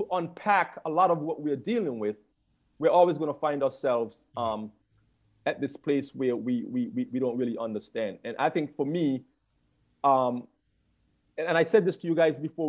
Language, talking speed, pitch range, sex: English, 195 wpm, 145-190 Hz, male